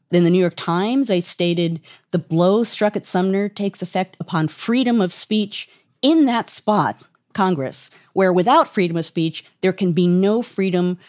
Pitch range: 155-215 Hz